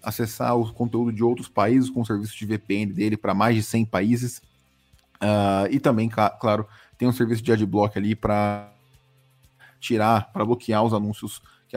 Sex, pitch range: male, 105-115 Hz